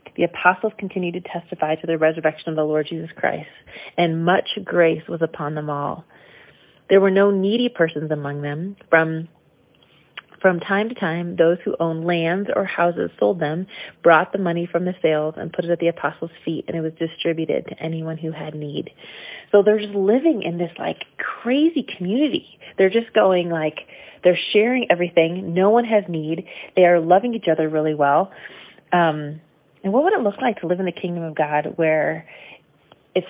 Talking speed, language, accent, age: 190 wpm, English, American, 30-49